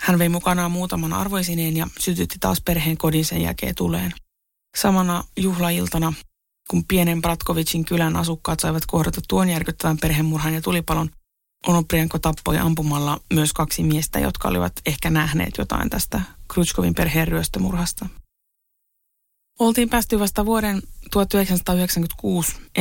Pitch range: 155-175 Hz